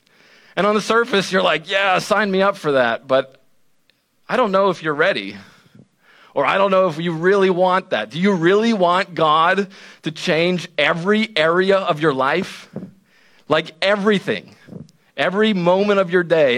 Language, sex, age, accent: English, male, 40-59, American